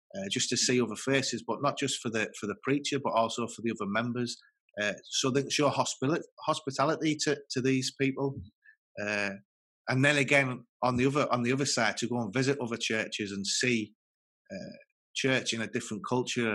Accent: British